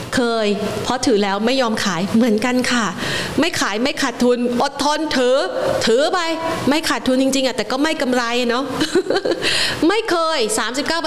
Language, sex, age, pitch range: Thai, female, 20-39, 210-270 Hz